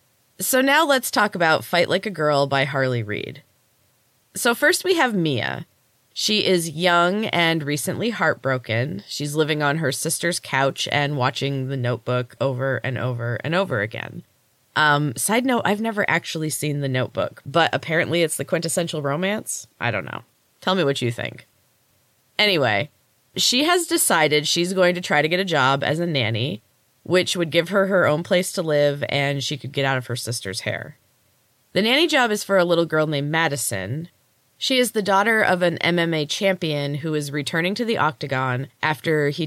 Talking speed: 185 wpm